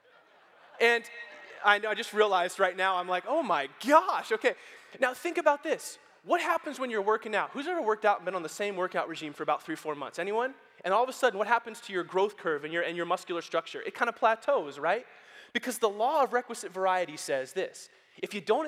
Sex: male